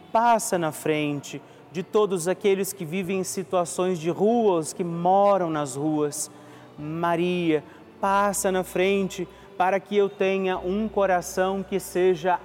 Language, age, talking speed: Portuguese, 40-59, 135 wpm